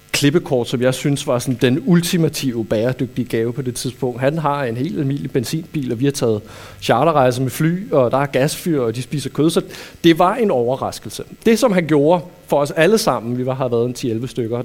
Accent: native